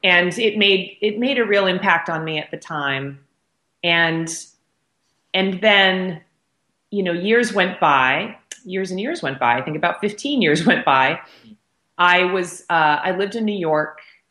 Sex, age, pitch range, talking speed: female, 30-49, 130-175 Hz, 170 wpm